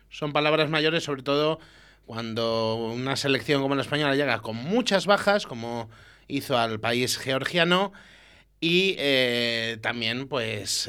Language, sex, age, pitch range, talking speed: Spanish, male, 30-49, 110-135 Hz, 130 wpm